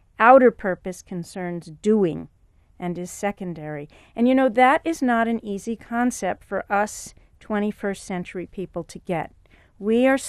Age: 50-69